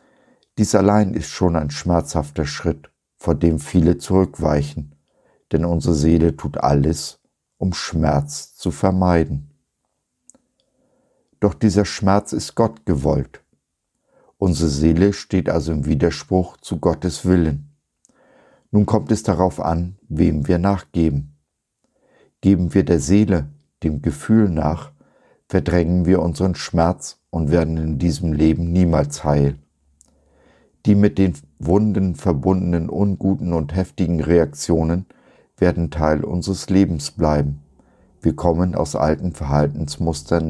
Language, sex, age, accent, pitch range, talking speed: German, male, 50-69, German, 75-90 Hz, 120 wpm